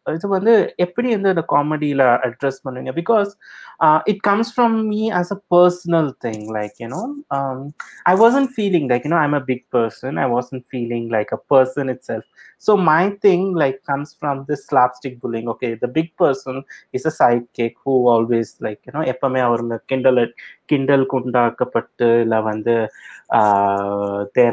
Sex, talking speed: male, 175 wpm